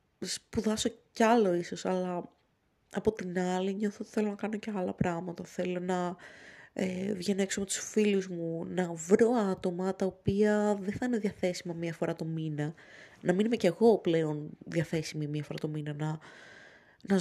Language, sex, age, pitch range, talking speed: Greek, female, 20-39, 165-200 Hz, 175 wpm